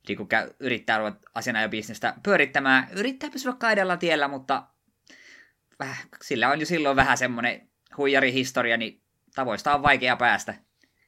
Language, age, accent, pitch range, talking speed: Finnish, 20-39, native, 105-135 Hz, 125 wpm